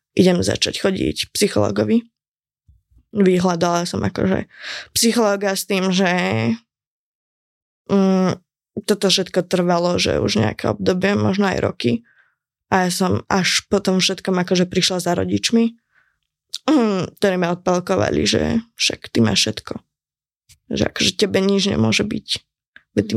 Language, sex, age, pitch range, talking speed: Czech, female, 20-39, 175-200 Hz, 125 wpm